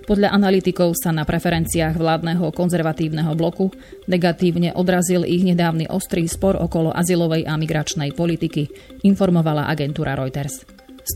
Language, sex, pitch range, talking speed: Slovak, female, 155-180 Hz, 125 wpm